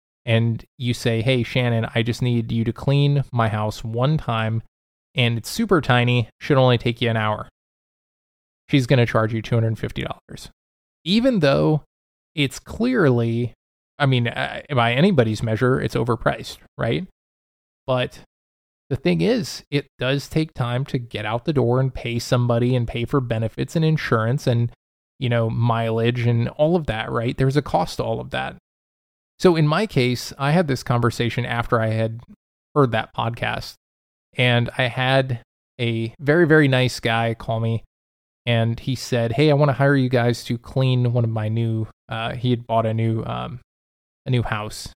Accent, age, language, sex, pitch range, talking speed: American, 20-39, English, male, 115-135 Hz, 175 wpm